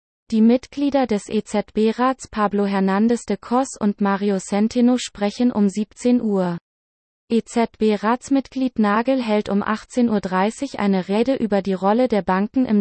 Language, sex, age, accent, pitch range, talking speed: English, female, 20-39, German, 195-240 Hz, 135 wpm